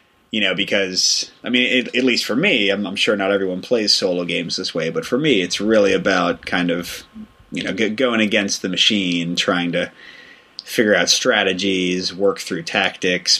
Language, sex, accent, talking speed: English, male, American, 185 wpm